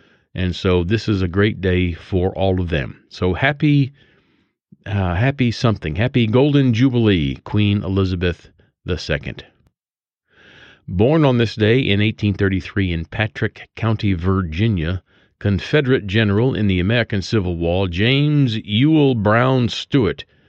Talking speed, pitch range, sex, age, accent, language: 125 wpm, 90-120 Hz, male, 40-59, American, English